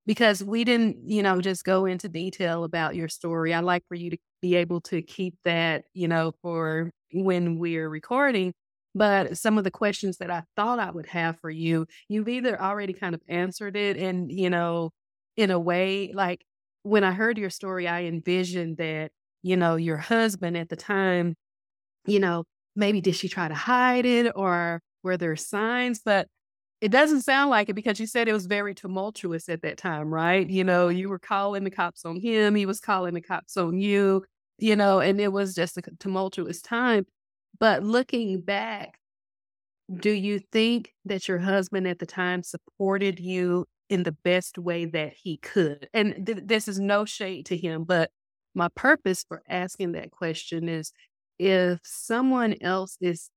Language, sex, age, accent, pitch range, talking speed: English, female, 30-49, American, 170-205 Hz, 185 wpm